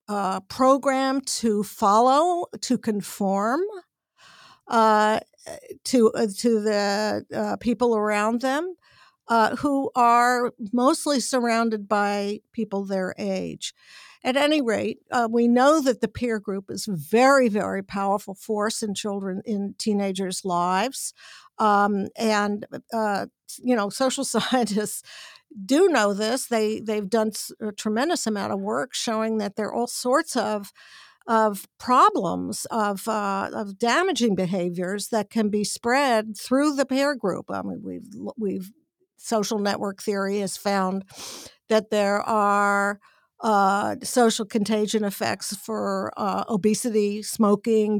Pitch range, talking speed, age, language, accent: 205-245 Hz, 130 wpm, 60-79, English, American